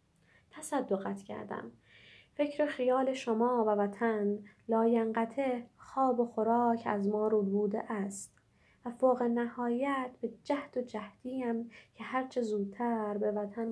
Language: Persian